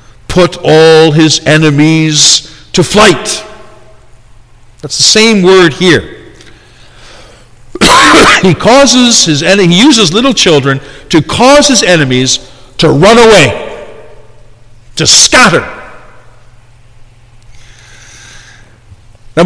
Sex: male